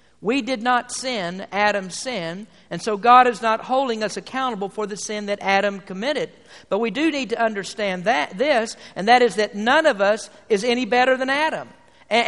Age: 50-69